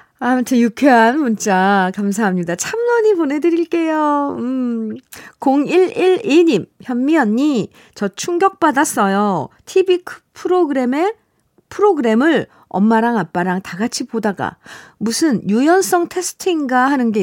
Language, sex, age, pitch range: Korean, female, 50-69, 205-295 Hz